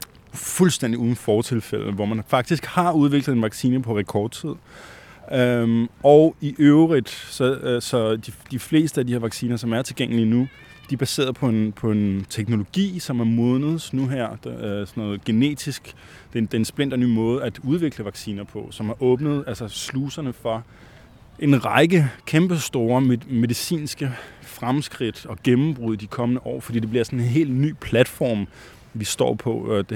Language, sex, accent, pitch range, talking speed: Danish, male, native, 110-135 Hz, 180 wpm